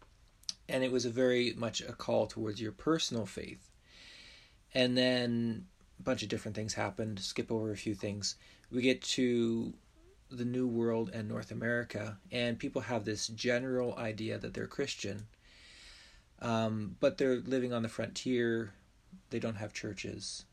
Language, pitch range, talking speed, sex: English, 105-125 Hz, 160 wpm, male